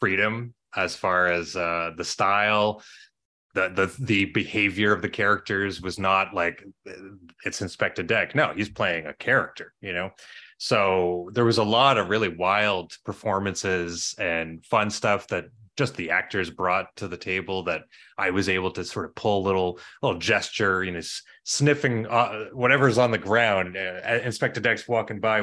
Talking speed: 170 wpm